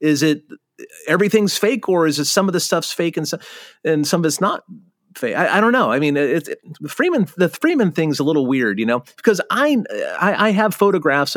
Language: English